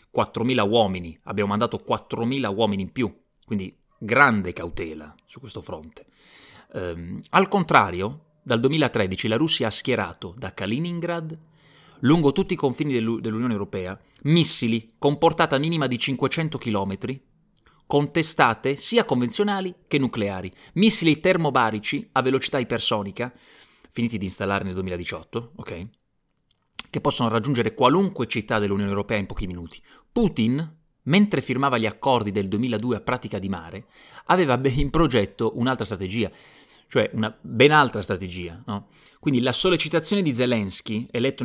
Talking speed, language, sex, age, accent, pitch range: 130 wpm, Italian, male, 30-49, native, 105-145 Hz